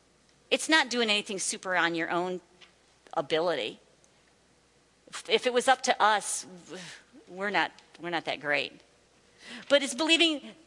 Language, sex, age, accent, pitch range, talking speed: English, female, 50-69, American, 195-300 Hz, 135 wpm